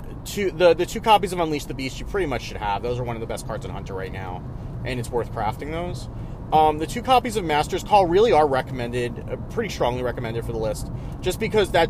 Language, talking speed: English, 245 wpm